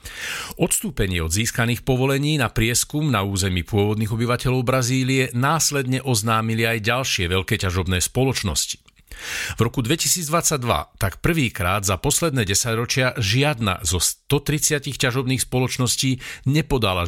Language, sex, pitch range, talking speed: Slovak, male, 100-130 Hz, 110 wpm